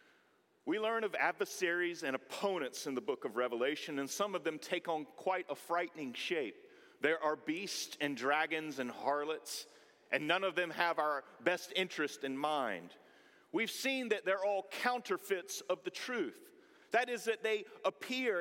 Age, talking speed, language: 40-59, 170 wpm, English